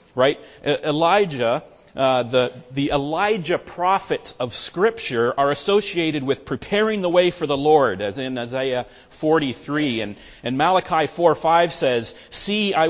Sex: male